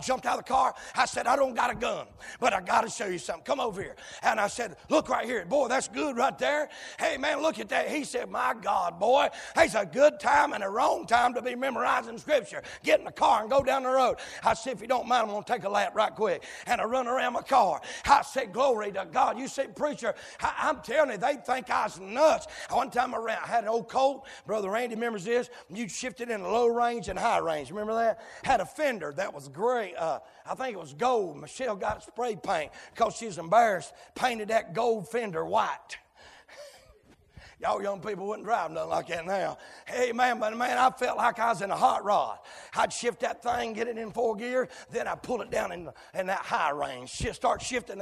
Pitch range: 230-290 Hz